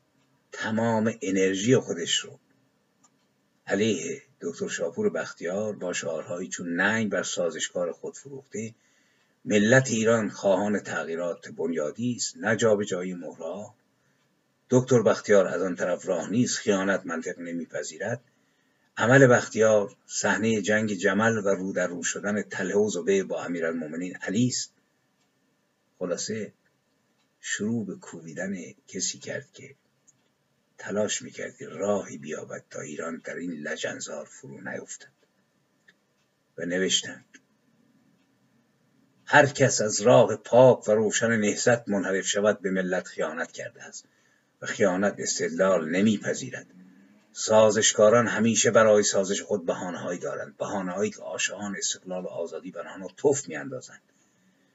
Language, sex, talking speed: Persian, male, 120 wpm